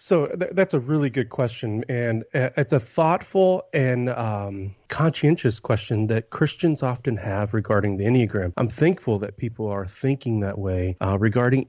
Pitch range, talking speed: 110-135 Hz, 160 wpm